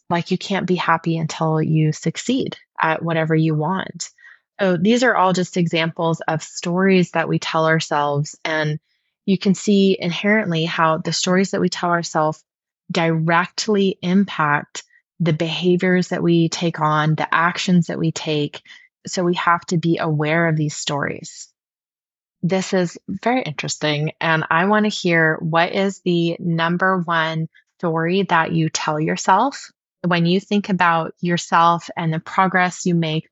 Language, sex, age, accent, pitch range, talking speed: English, female, 20-39, American, 160-195 Hz, 160 wpm